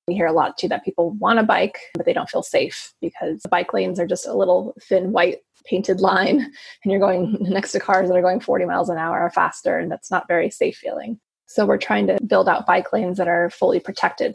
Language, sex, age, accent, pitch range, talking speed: English, female, 20-39, American, 180-205 Hz, 250 wpm